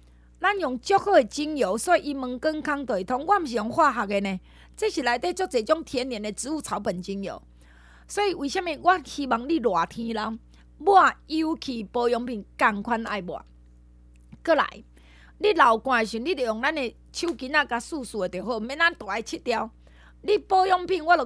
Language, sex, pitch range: Chinese, female, 210-315 Hz